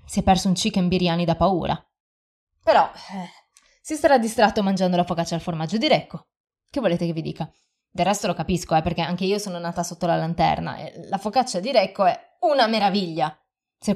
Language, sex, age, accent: Italian, female, 20-39, native